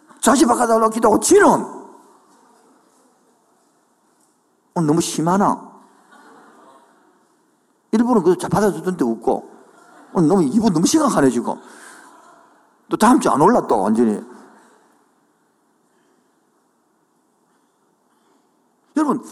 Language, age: Korean, 50-69